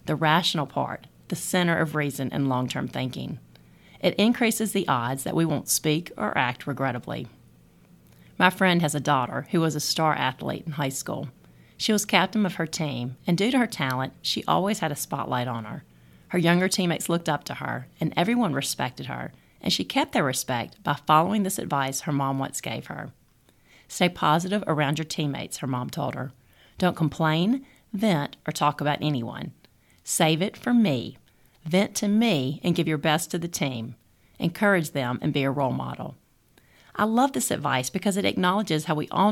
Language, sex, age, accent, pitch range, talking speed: English, female, 40-59, American, 135-180 Hz, 190 wpm